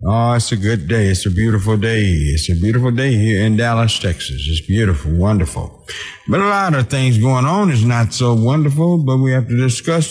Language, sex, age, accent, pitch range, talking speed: English, male, 60-79, American, 100-130 Hz, 215 wpm